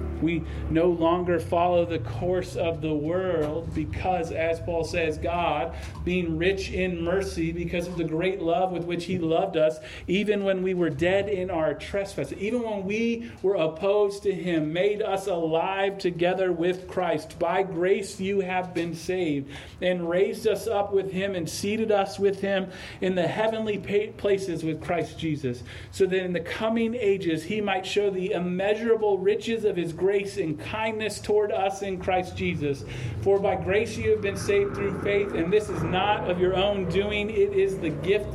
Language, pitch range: English, 170-200 Hz